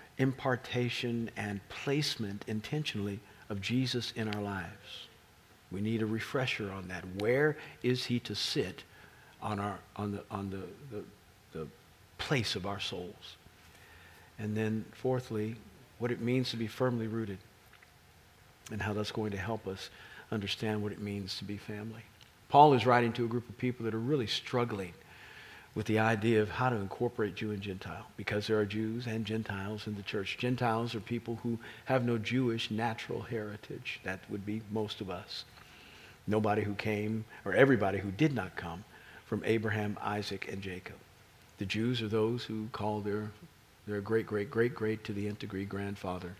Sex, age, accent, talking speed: male, 50-69, American, 170 wpm